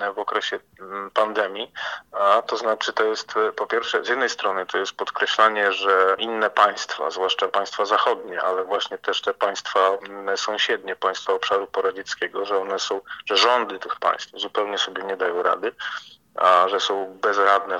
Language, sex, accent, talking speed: Polish, male, native, 160 wpm